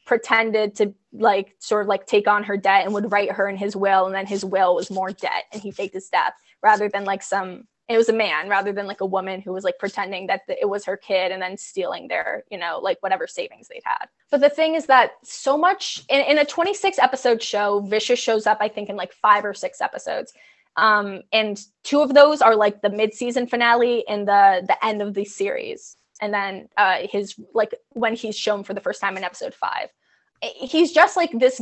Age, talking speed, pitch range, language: 20-39, 230 wpm, 200-265 Hz, English